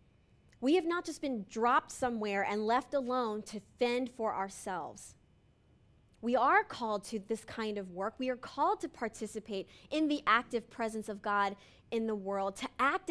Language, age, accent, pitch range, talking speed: English, 30-49, American, 205-250 Hz, 175 wpm